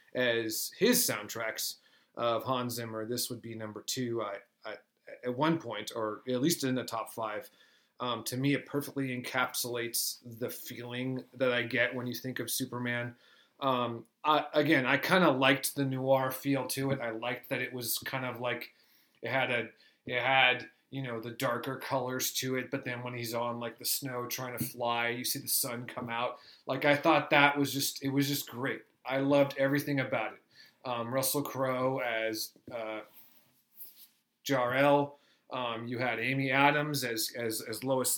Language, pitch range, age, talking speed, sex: English, 120-140 Hz, 30-49, 185 wpm, male